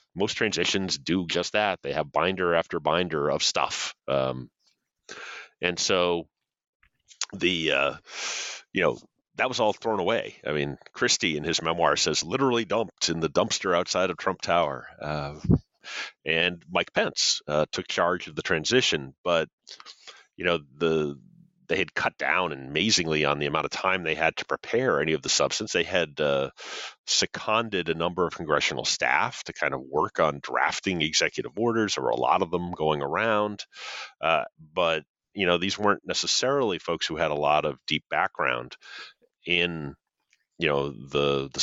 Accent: American